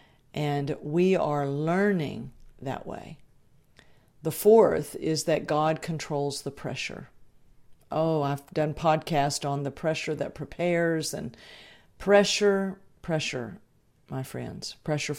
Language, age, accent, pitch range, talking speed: English, 50-69, American, 140-165 Hz, 115 wpm